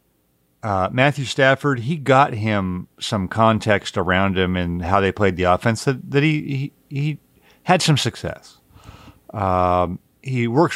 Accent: American